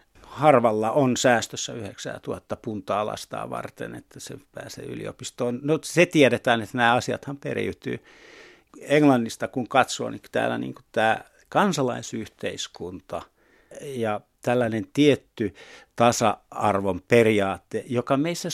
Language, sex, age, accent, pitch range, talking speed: Finnish, male, 60-79, native, 115-150 Hz, 105 wpm